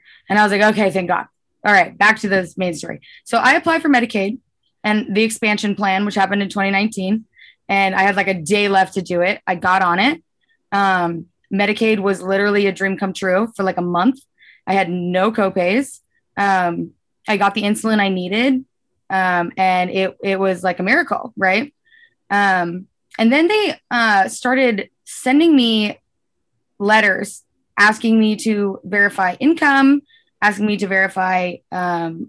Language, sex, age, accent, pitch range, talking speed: English, female, 20-39, American, 185-220 Hz, 170 wpm